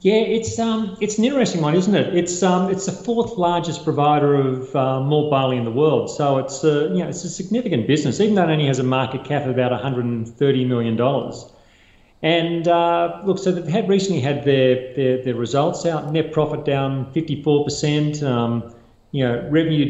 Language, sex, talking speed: English, male, 195 wpm